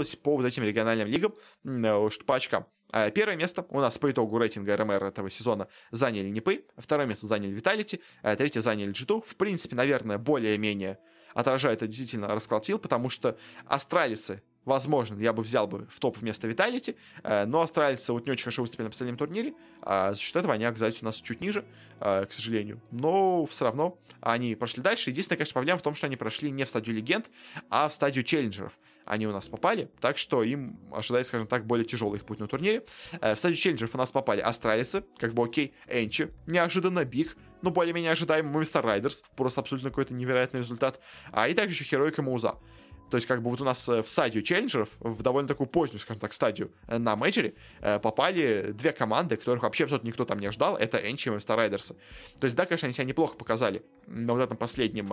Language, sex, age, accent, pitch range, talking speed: Russian, male, 20-39, native, 110-150 Hz, 200 wpm